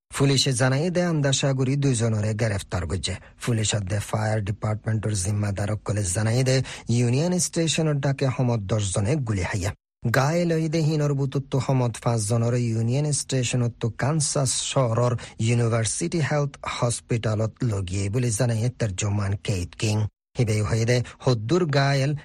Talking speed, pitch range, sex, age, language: 90 wpm, 105-135 Hz, male, 40-59, Bengali